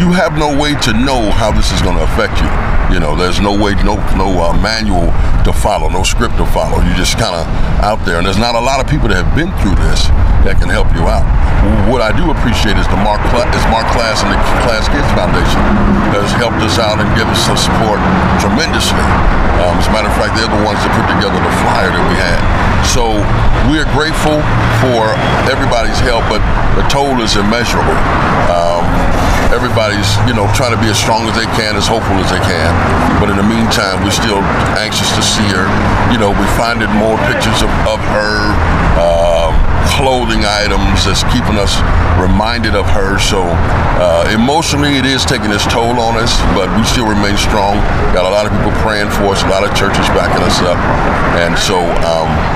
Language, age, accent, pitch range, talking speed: English, 60-79, American, 90-110 Hz, 210 wpm